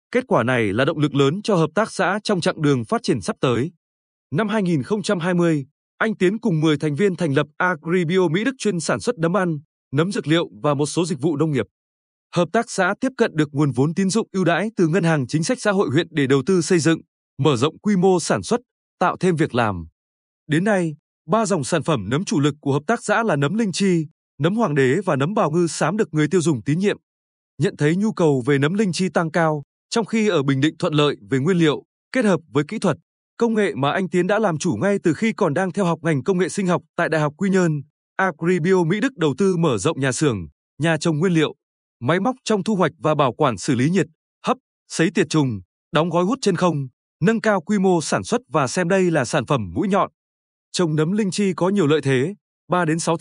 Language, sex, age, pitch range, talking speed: Vietnamese, male, 20-39, 150-195 Hz, 245 wpm